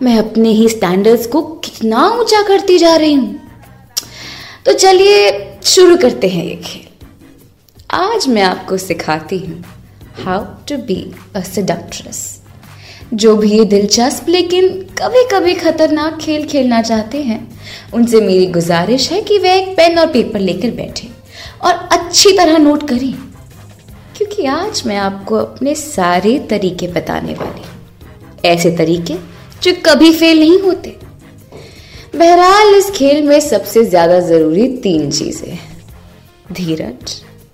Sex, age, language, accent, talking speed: female, 20-39, Hindi, native, 135 wpm